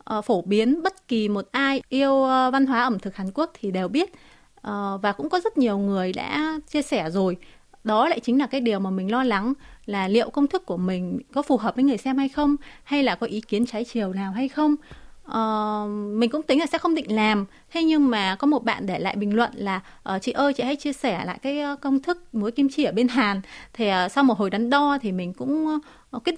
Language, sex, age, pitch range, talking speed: Vietnamese, female, 20-39, 205-280 Hz, 240 wpm